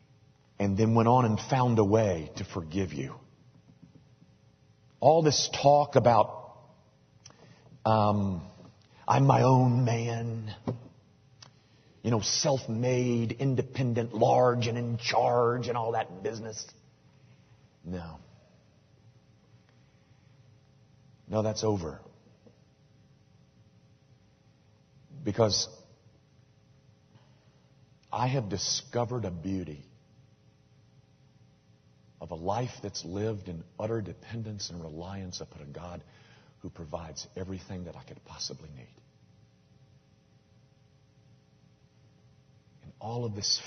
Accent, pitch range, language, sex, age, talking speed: American, 105-130 Hz, English, male, 40-59, 90 wpm